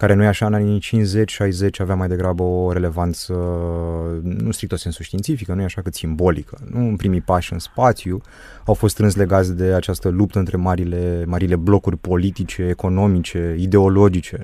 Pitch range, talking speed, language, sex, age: 85-100 Hz, 165 wpm, Romanian, male, 20-39